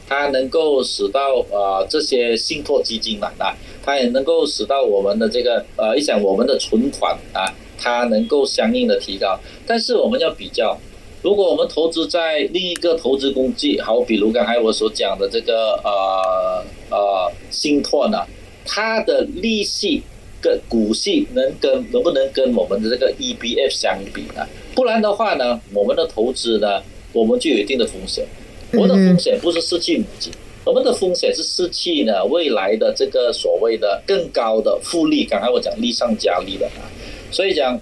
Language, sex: Chinese, male